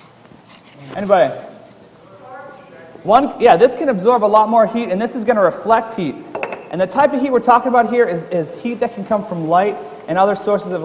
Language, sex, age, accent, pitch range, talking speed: English, male, 30-49, American, 165-220 Hz, 205 wpm